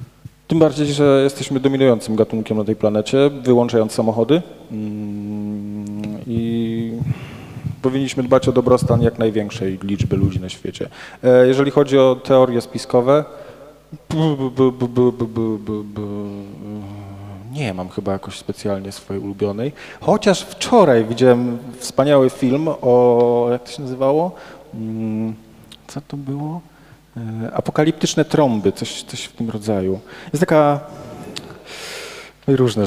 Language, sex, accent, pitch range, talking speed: Polish, male, native, 105-135 Hz, 105 wpm